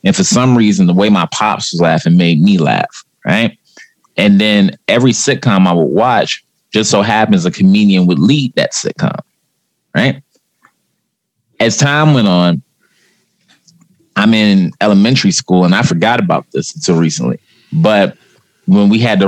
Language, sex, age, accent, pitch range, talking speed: English, male, 30-49, American, 90-135 Hz, 160 wpm